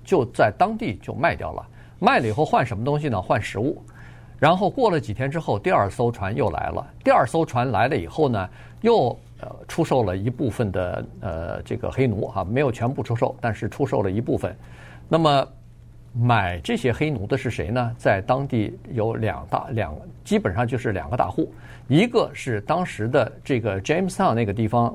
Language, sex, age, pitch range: Chinese, male, 50-69, 110-135 Hz